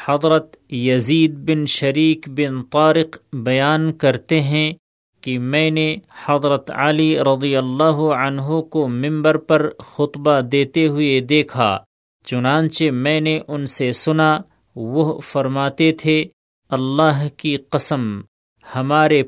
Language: Urdu